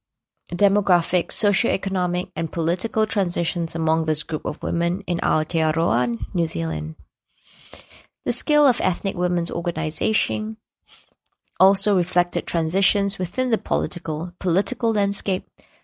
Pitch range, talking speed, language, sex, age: 155-200 Hz, 105 wpm, English, female, 20-39